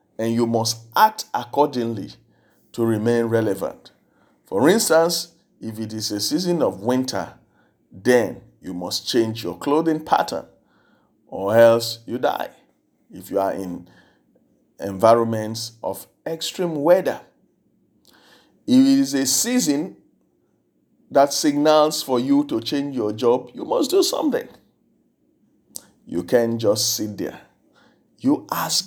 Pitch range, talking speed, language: 110-165 Hz, 125 wpm, English